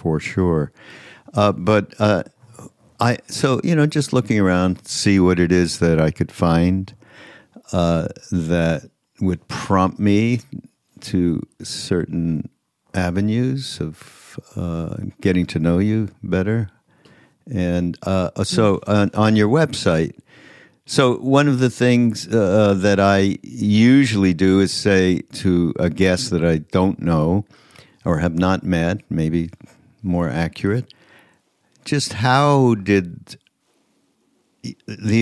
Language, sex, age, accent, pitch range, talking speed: English, male, 60-79, American, 90-110 Hz, 125 wpm